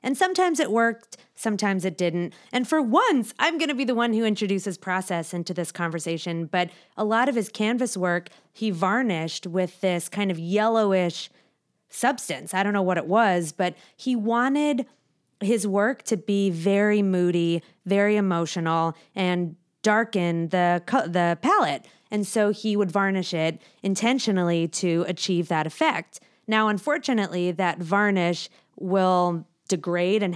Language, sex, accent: English, female, American